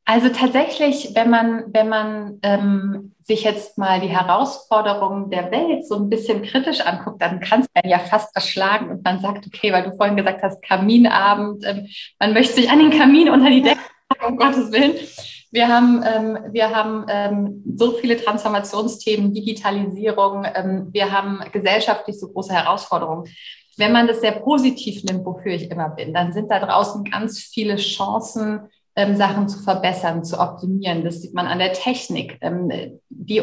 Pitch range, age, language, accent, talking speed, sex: 185-225 Hz, 30-49, German, German, 170 wpm, female